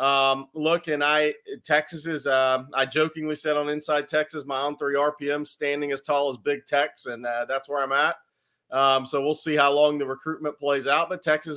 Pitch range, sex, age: 140-160 Hz, male, 30-49